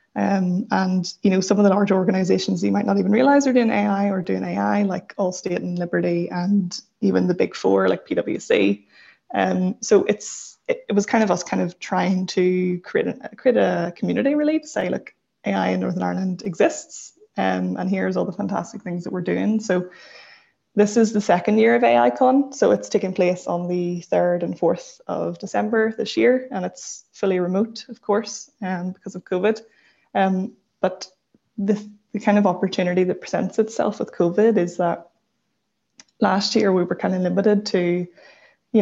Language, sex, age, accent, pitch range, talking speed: English, female, 20-39, Irish, 180-210 Hz, 190 wpm